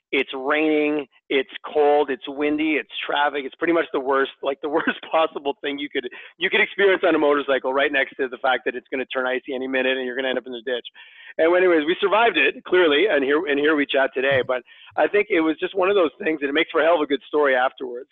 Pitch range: 135-165 Hz